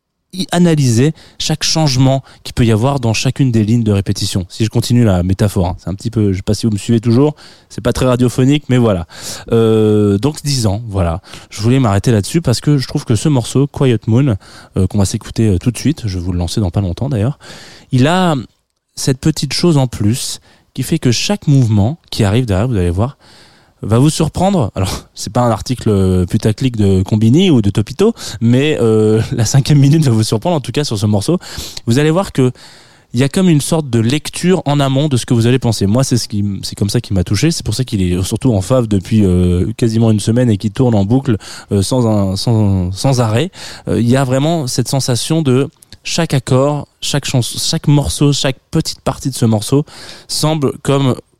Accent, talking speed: French, 225 wpm